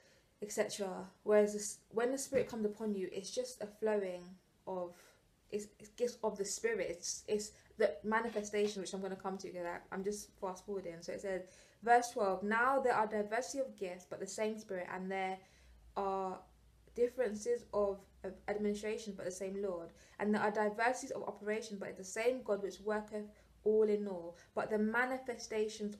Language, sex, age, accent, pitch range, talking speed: English, female, 20-39, British, 195-230 Hz, 185 wpm